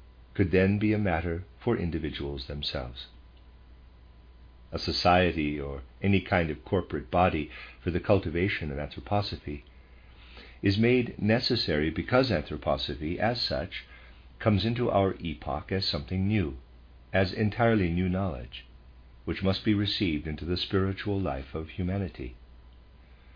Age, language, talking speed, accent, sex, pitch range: 50-69, English, 125 wpm, American, male, 65-100 Hz